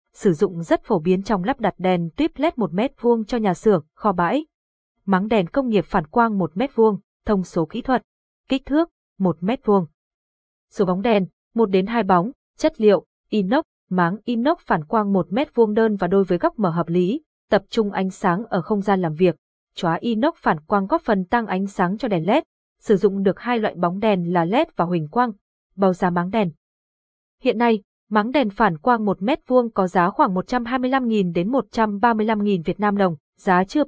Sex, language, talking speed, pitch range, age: female, Vietnamese, 205 wpm, 190-245 Hz, 20-39